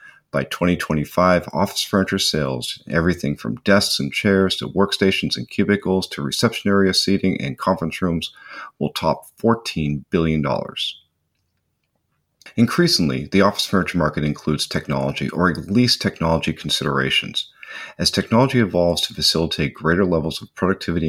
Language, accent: English, American